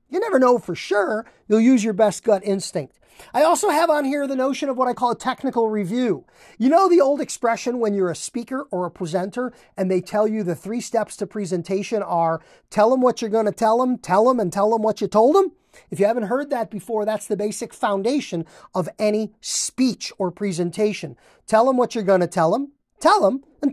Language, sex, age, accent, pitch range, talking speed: English, male, 40-59, American, 205-275 Hz, 225 wpm